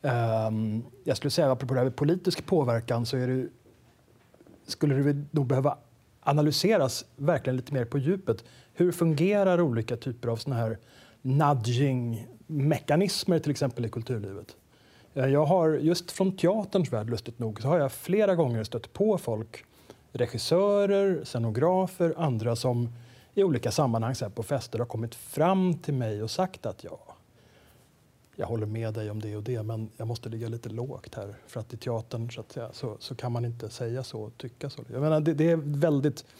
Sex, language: male, Swedish